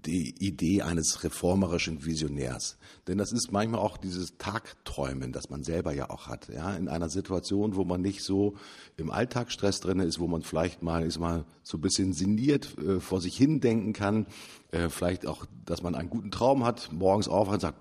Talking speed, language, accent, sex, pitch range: 200 wpm, German, German, male, 85-115 Hz